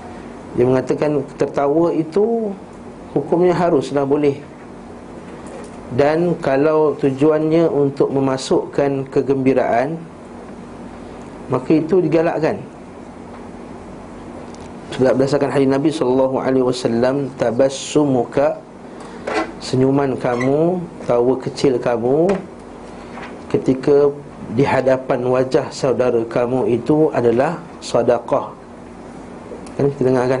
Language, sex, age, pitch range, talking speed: Malay, male, 50-69, 130-150 Hz, 80 wpm